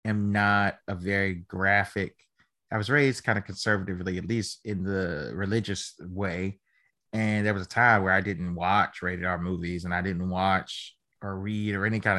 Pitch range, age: 100-130 Hz, 20-39